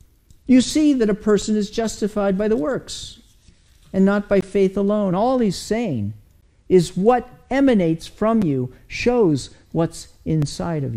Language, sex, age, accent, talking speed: English, male, 50-69, American, 150 wpm